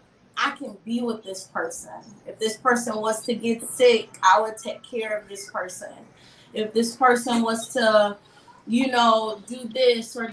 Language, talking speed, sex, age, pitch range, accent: English, 175 wpm, female, 20-39, 205-240 Hz, American